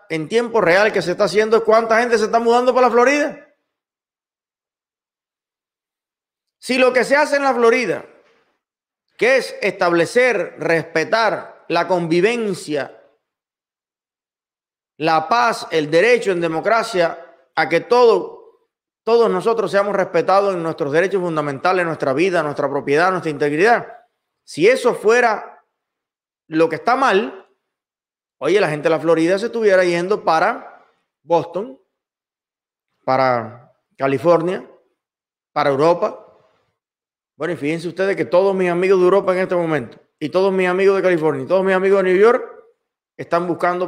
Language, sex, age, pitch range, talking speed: Spanish, male, 30-49, 165-230 Hz, 140 wpm